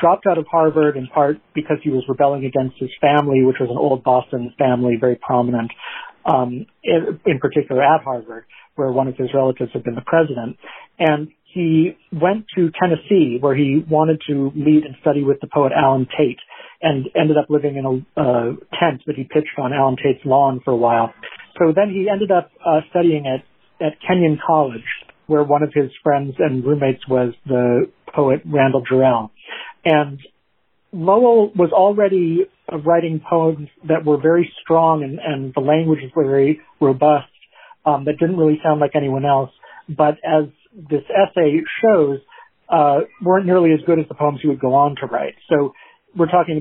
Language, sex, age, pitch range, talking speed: English, male, 50-69, 135-160 Hz, 180 wpm